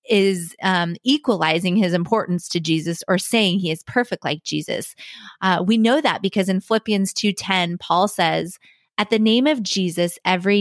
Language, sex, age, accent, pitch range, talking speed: English, female, 30-49, American, 175-215 Hz, 175 wpm